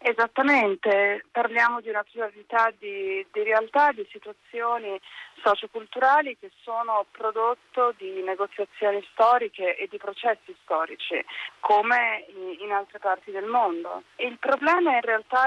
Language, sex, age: Italian, female, 30-49